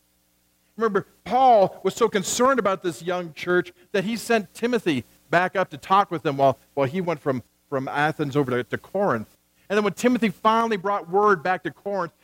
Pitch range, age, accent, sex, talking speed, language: 135-210 Hz, 50-69, American, male, 195 wpm, English